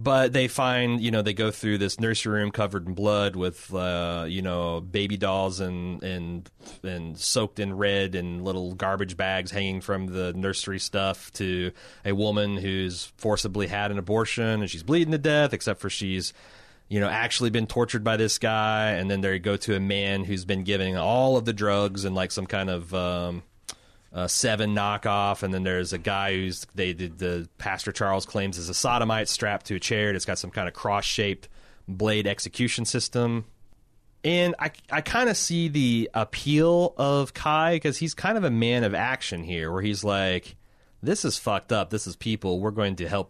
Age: 30-49